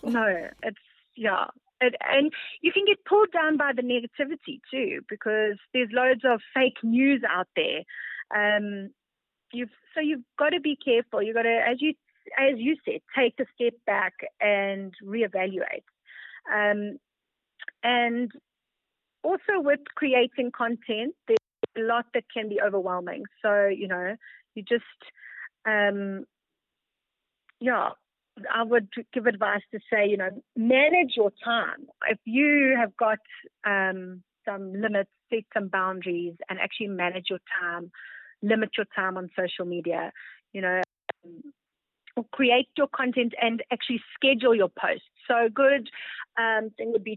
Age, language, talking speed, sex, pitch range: 30-49, English, 145 wpm, female, 200-260 Hz